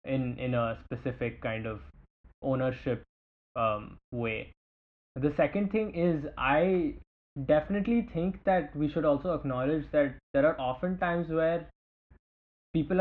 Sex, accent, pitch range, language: male, Indian, 120-145 Hz, English